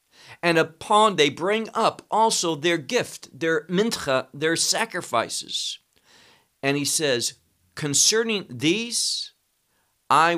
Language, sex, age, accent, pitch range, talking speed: English, male, 50-69, American, 135-175 Hz, 105 wpm